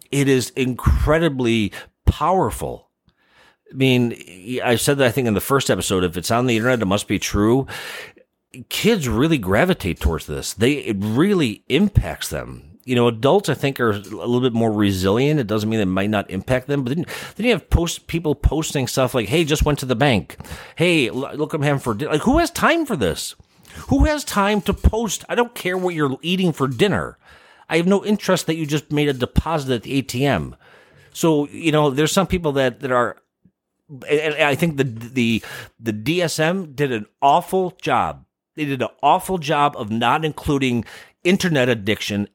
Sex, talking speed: male, 195 wpm